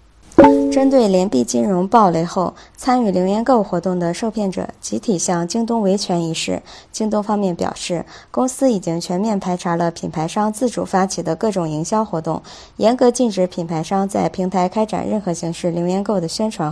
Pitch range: 170-215 Hz